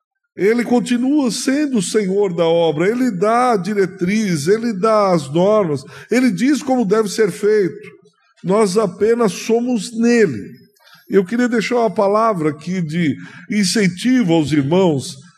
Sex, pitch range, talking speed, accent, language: male, 170-220 Hz, 135 wpm, Brazilian, Portuguese